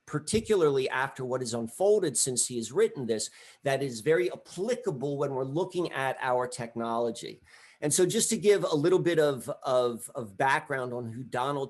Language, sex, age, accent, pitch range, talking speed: English, male, 40-59, American, 125-170 Hz, 180 wpm